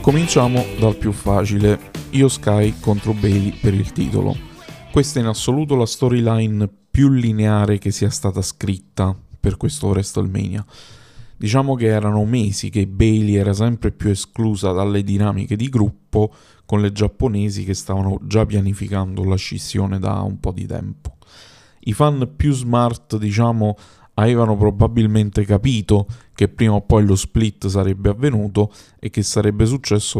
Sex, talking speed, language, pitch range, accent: male, 145 wpm, Italian, 100-115 Hz, native